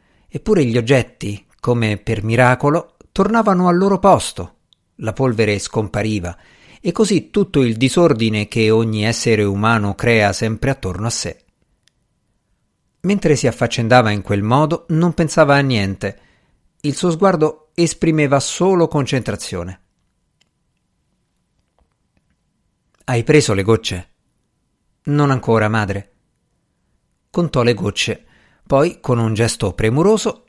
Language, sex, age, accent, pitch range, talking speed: Italian, male, 50-69, native, 105-150 Hz, 115 wpm